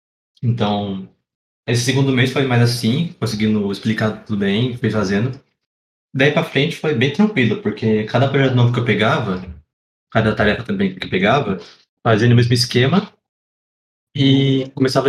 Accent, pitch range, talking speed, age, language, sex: Brazilian, 110-135 Hz, 150 wpm, 20-39, Portuguese, male